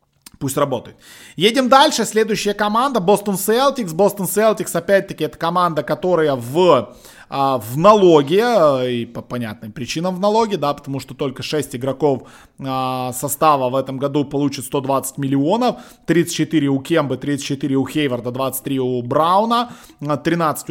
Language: Russian